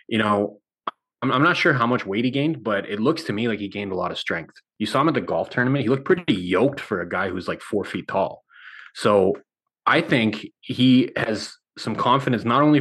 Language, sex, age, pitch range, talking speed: English, male, 20-39, 100-130 Hz, 240 wpm